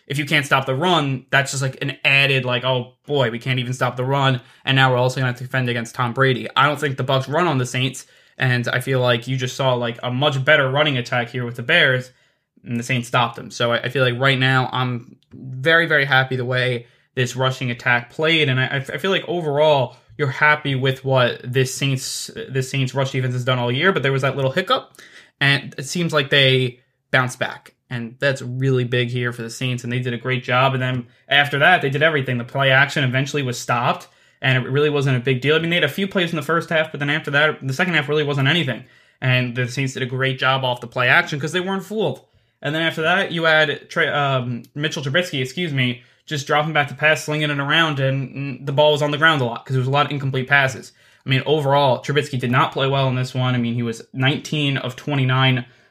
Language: English